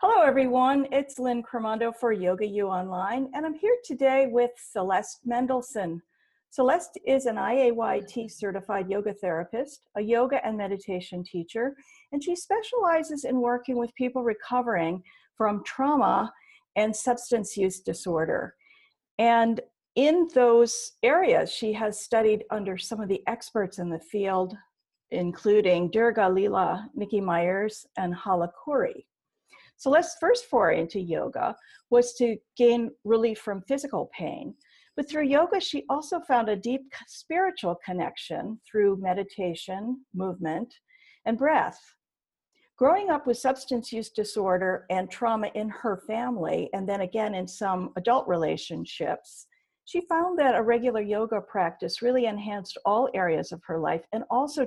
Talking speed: 140 wpm